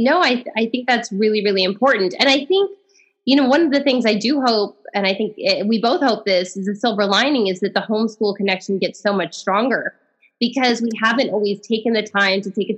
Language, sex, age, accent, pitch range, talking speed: English, female, 20-39, American, 195-230 Hz, 245 wpm